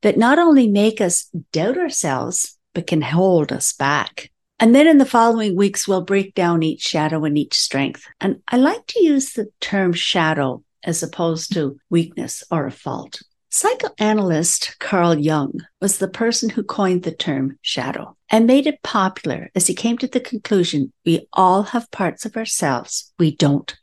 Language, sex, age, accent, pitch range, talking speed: English, female, 60-79, American, 165-230 Hz, 175 wpm